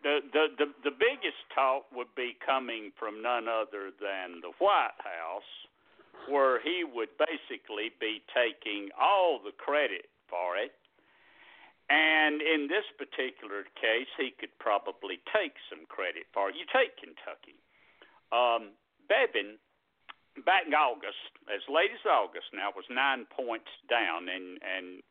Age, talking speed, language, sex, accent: 60-79, 140 wpm, English, male, American